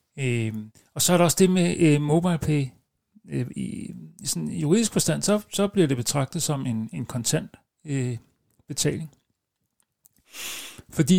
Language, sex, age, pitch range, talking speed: Danish, male, 60-79, 130-165 Hz, 120 wpm